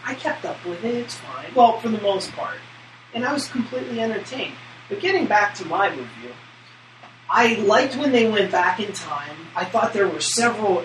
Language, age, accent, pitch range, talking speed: English, 30-49, American, 160-200 Hz, 200 wpm